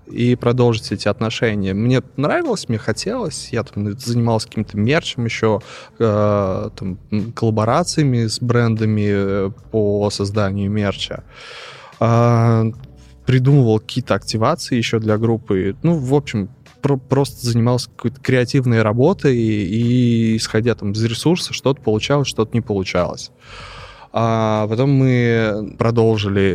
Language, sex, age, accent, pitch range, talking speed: Russian, male, 20-39, native, 110-130 Hz, 110 wpm